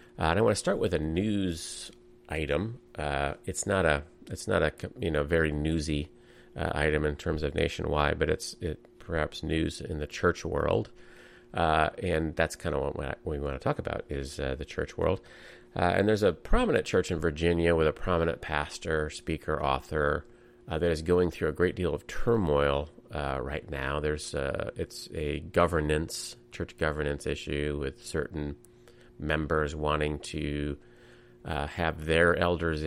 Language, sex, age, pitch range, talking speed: English, male, 30-49, 75-90 Hz, 175 wpm